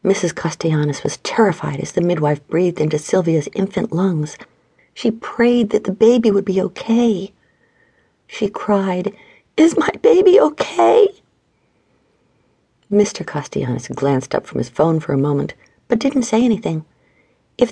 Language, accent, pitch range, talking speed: English, American, 155-250 Hz, 140 wpm